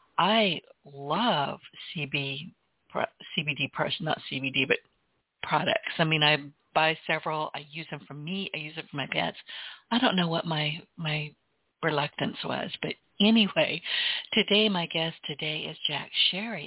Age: 60-79